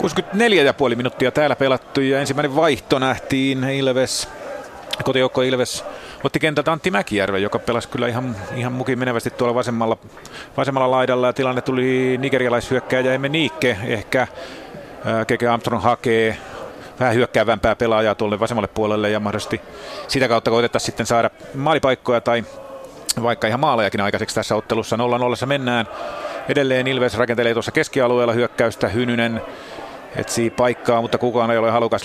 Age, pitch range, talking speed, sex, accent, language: 30-49, 110-130 Hz, 135 wpm, male, native, Finnish